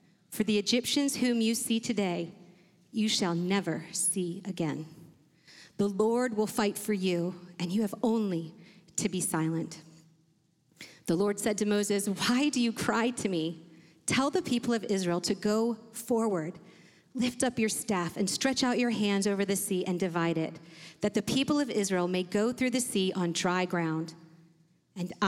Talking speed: 175 wpm